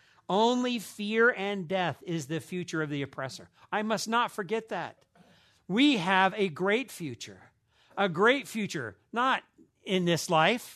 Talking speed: 150 wpm